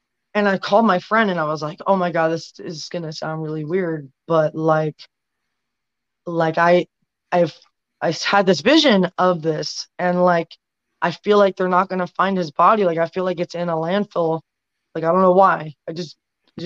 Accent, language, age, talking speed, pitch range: American, English, 20-39, 205 wpm, 165-195 Hz